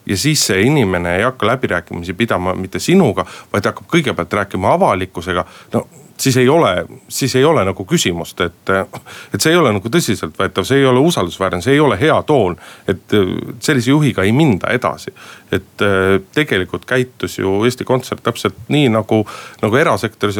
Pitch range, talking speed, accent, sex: 90-120 Hz, 170 wpm, native, male